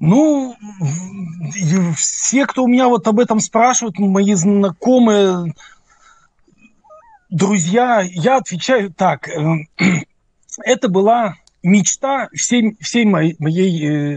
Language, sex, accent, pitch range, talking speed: Russian, male, native, 175-230 Hz, 95 wpm